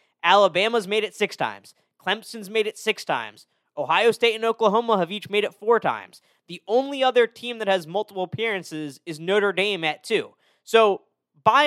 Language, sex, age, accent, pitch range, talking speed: English, male, 20-39, American, 165-240 Hz, 180 wpm